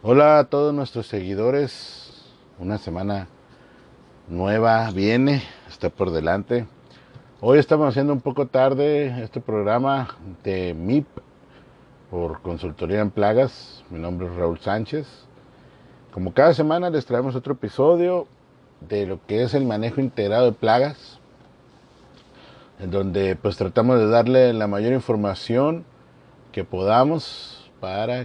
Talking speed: 125 wpm